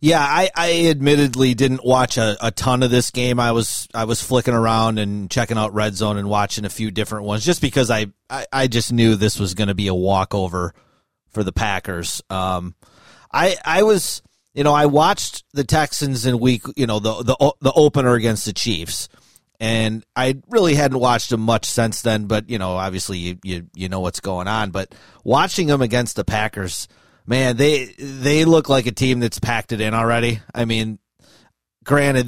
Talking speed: 200 wpm